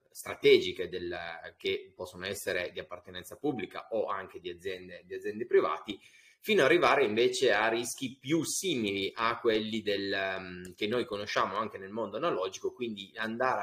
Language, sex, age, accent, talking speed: Italian, male, 30-49, native, 150 wpm